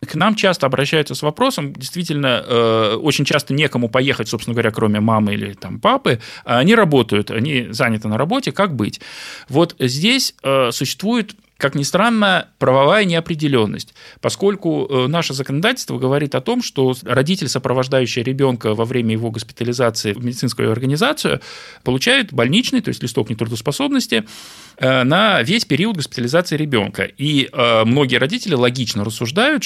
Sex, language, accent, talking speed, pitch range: male, Russian, native, 135 wpm, 120-175 Hz